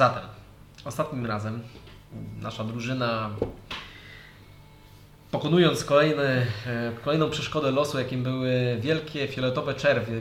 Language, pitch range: Polish, 115-135 Hz